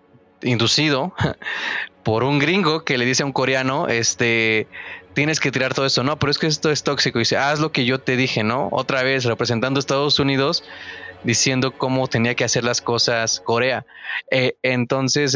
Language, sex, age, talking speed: Spanish, male, 20-39, 190 wpm